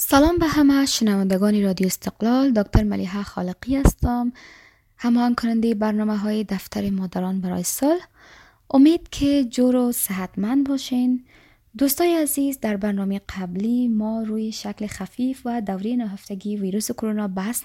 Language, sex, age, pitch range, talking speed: Persian, female, 20-39, 195-270 Hz, 135 wpm